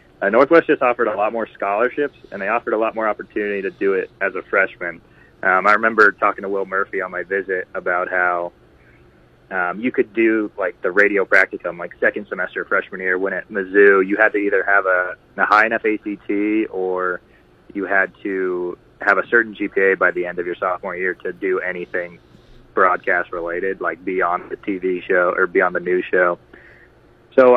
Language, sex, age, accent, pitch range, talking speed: English, male, 20-39, American, 90-110 Hz, 195 wpm